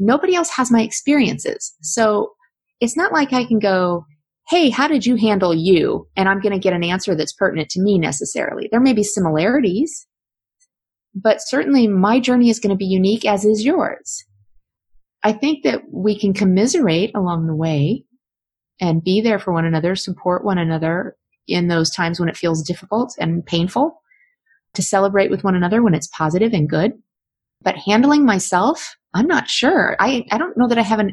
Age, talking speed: 30-49, 185 wpm